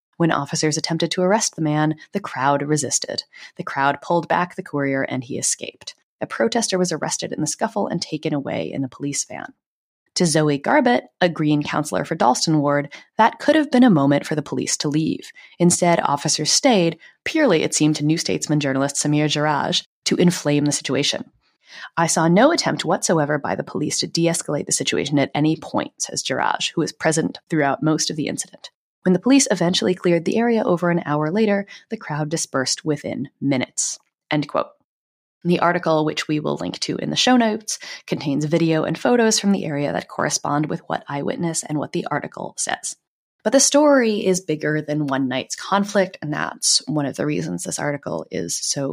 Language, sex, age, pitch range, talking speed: English, female, 30-49, 145-185 Hz, 195 wpm